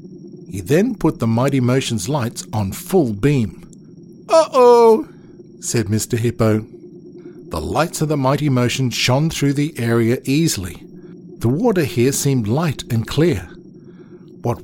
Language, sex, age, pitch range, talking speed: English, male, 50-69, 130-180 Hz, 140 wpm